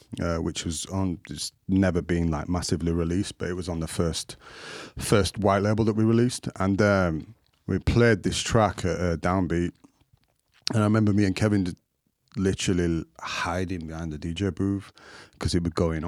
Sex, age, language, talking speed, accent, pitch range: male, 30-49, English, 185 wpm, British, 90-115 Hz